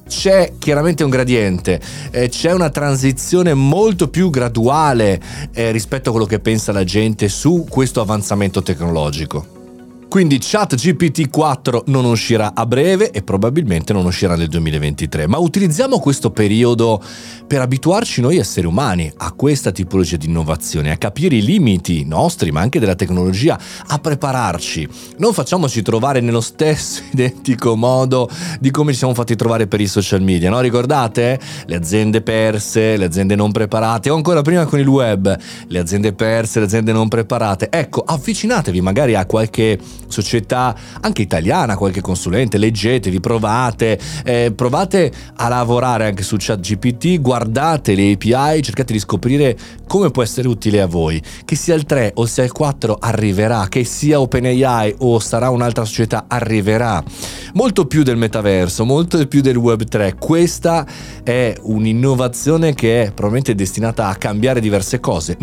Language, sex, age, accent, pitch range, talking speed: Italian, male, 30-49, native, 105-140 Hz, 150 wpm